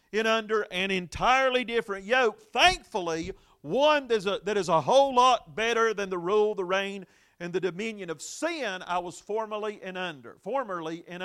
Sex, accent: male, American